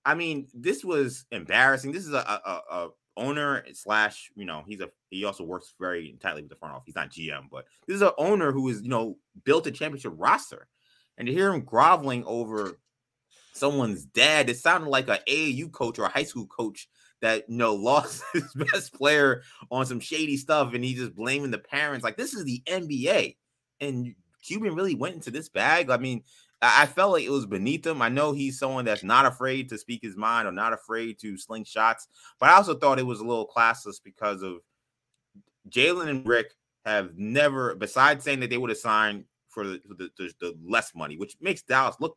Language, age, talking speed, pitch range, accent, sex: English, 20-39, 210 wpm, 105-140 Hz, American, male